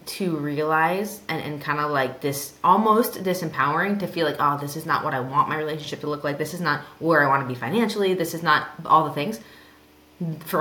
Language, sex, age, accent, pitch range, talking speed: English, female, 20-39, American, 150-205 Hz, 225 wpm